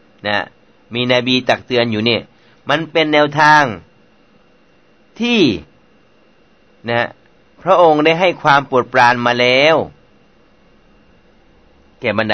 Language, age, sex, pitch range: Thai, 30-49, male, 130-160 Hz